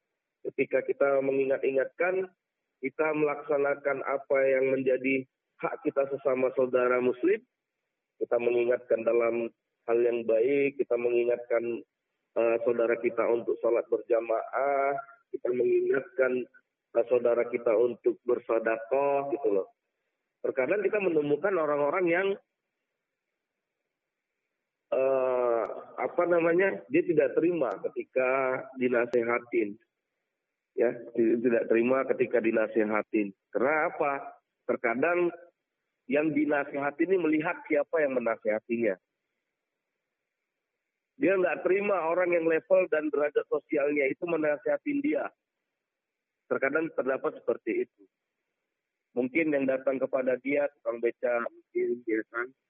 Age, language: 40-59, Indonesian